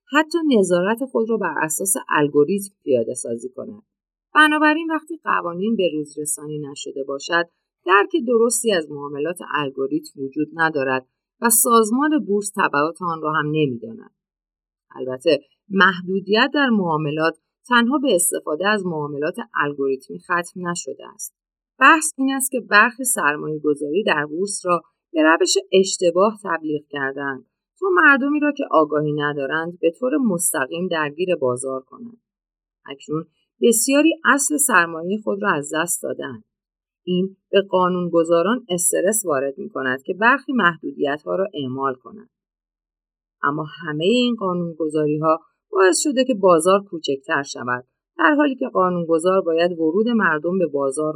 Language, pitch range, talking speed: Persian, 150-220 Hz, 135 wpm